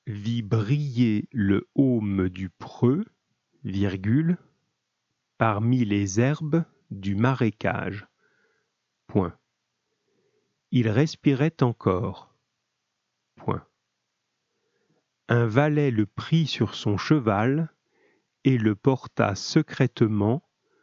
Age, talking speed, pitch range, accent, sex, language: 40-59, 80 wpm, 105-140 Hz, French, male, French